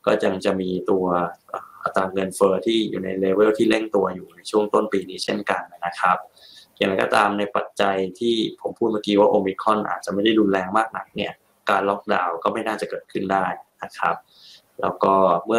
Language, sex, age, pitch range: Thai, male, 20-39, 95-105 Hz